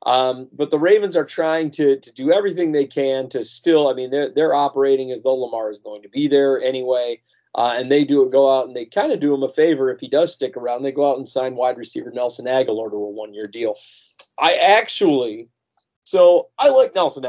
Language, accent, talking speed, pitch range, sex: English, American, 230 wpm, 130-155 Hz, male